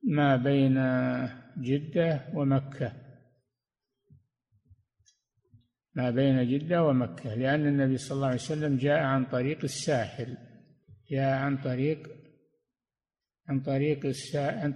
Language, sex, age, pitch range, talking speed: Arabic, male, 60-79, 130-155 Hz, 100 wpm